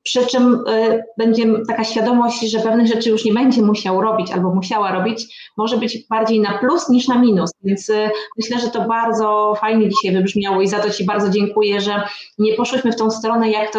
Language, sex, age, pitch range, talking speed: Polish, female, 30-49, 205-230 Hz, 200 wpm